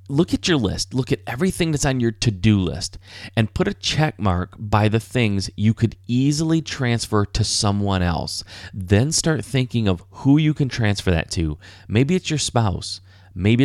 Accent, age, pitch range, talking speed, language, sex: American, 30-49, 95-130 Hz, 185 wpm, English, male